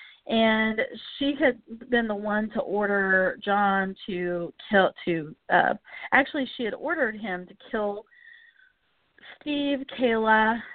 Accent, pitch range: American, 195-255 Hz